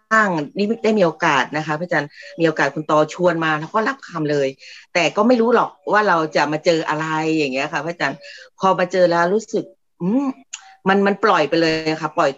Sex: female